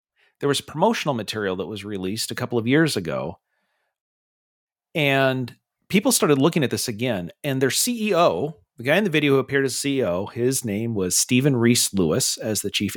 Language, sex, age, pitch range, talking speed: English, male, 40-59, 115-145 Hz, 185 wpm